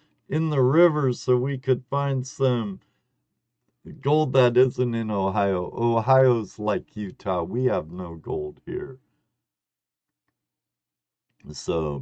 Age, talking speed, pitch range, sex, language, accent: 50-69, 110 wpm, 100-130 Hz, male, English, American